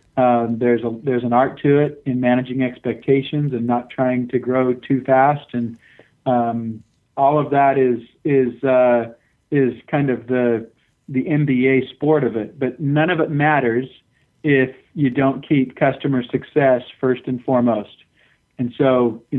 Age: 50-69